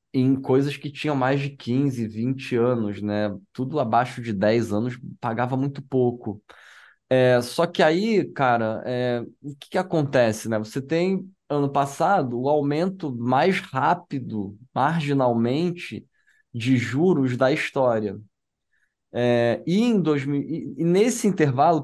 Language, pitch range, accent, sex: Portuguese, 115-145 Hz, Brazilian, male